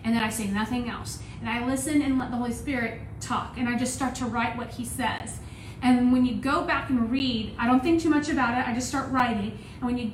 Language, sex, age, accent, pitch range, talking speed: English, female, 30-49, American, 230-260 Hz, 265 wpm